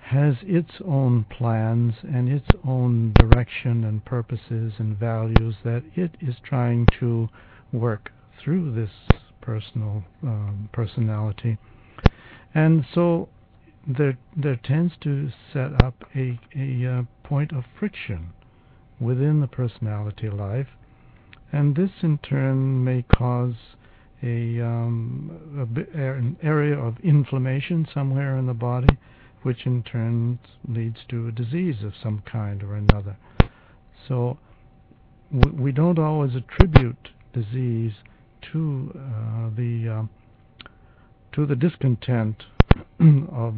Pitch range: 110-135 Hz